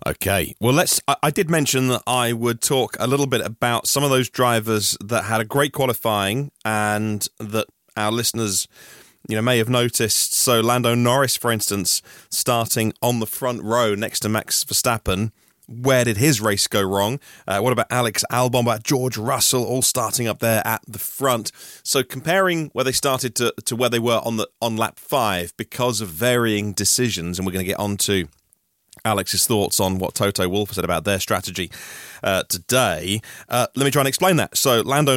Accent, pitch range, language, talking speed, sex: British, 105-130 Hz, English, 190 wpm, male